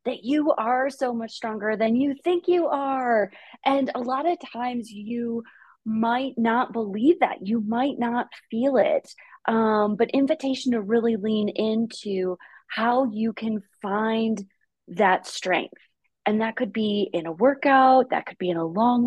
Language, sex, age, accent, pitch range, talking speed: English, female, 20-39, American, 205-265 Hz, 165 wpm